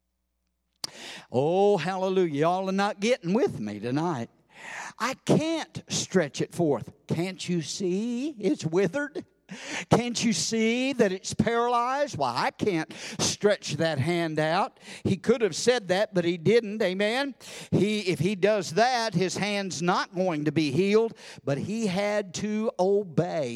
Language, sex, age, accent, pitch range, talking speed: English, male, 50-69, American, 165-220 Hz, 150 wpm